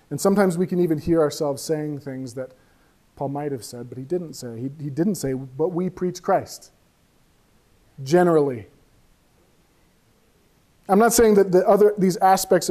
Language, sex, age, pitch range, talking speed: English, male, 40-59, 145-185 Hz, 155 wpm